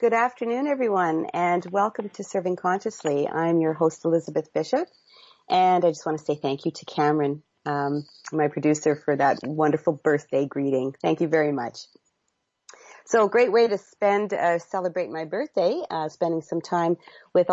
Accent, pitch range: American, 150-180 Hz